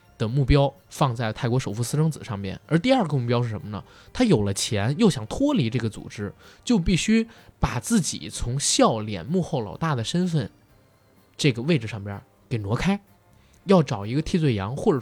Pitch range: 105-150 Hz